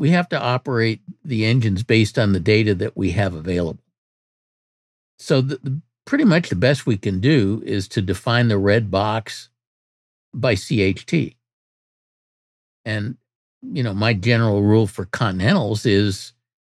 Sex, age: male, 60-79